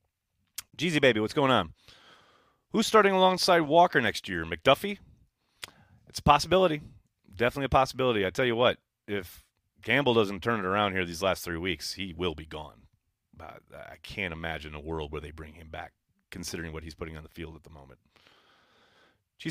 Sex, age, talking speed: male, 30-49, 180 wpm